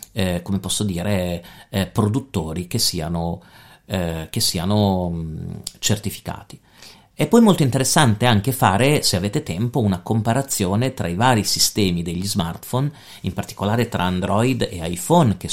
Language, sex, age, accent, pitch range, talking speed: Italian, male, 40-59, native, 95-130 Hz, 130 wpm